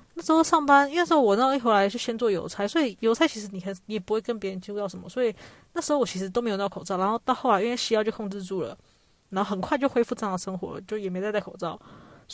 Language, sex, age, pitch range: Chinese, female, 20-39, 190-235 Hz